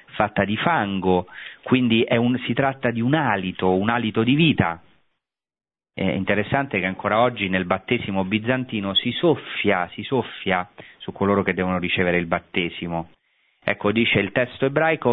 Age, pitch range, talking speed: 40-59, 95-125 Hz, 155 wpm